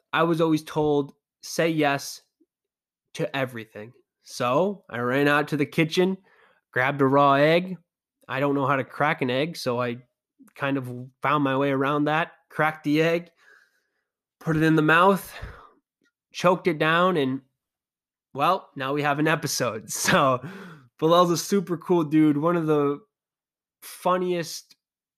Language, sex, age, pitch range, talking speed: English, male, 20-39, 135-155 Hz, 155 wpm